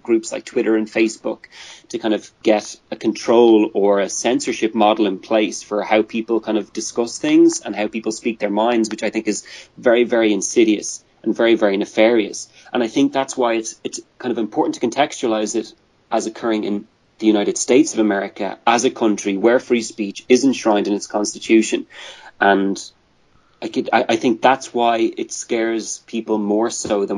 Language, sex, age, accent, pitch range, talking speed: English, male, 30-49, Irish, 105-120 Hz, 190 wpm